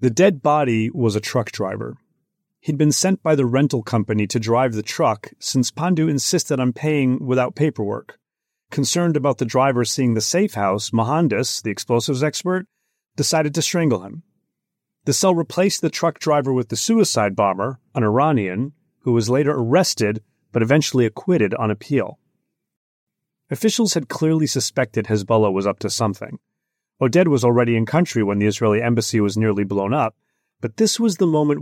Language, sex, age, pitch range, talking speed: English, male, 30-49, 115-160 Hz, 170 wpm